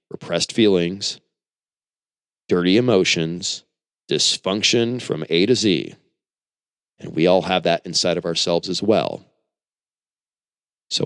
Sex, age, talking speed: male, 30-49, 110 wpm